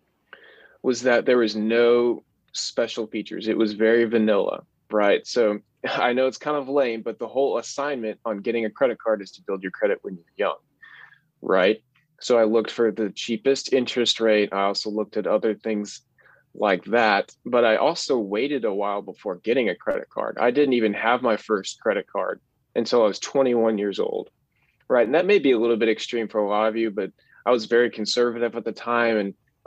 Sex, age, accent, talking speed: male, 20-39, American, 205 wpm